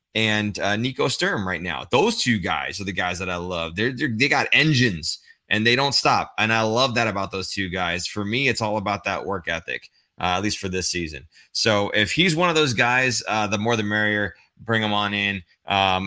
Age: 20-39